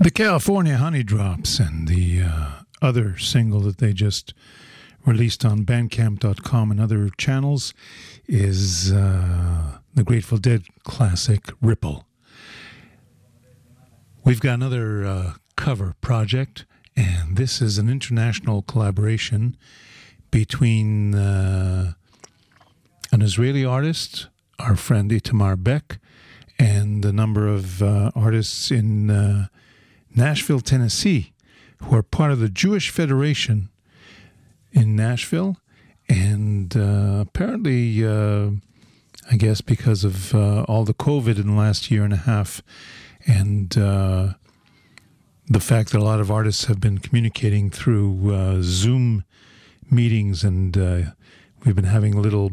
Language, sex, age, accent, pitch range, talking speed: English, male, 50-69, American, 100-120 Hz, 120 wpm